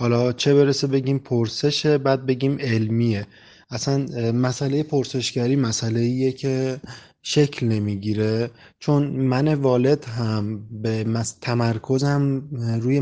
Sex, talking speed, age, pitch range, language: male, 105 wpm, 20-39, 115-135 Hz, Persian